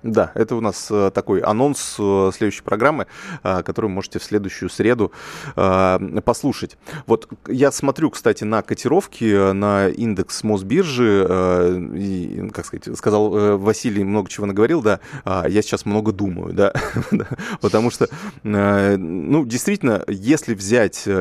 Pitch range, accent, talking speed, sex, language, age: 95-115 Hz, native, 120 wpm, male, Russian, 20-39